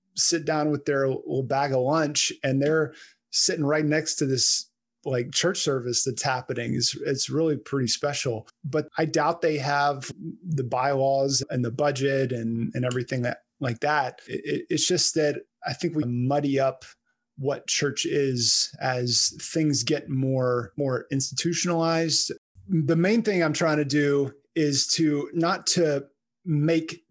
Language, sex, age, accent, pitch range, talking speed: English, male, 20-39, American, 130-160 Hz, 155 wpm